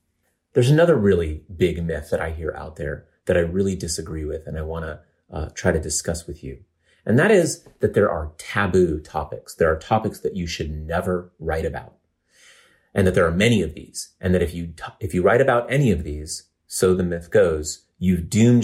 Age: 30-49